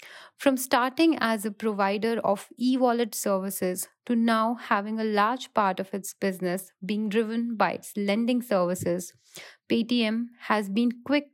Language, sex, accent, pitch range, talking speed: English, female, Indian, 195-240 Hz, 145 wpm